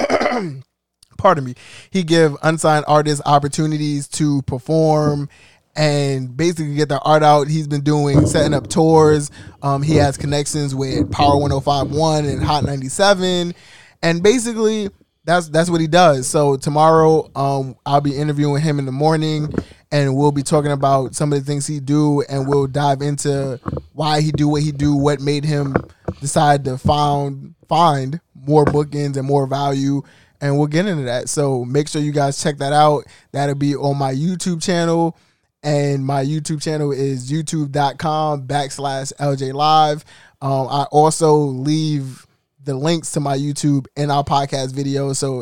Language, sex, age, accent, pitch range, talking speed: English, male, 20-39, American, 140-155 Hz, 165 wpm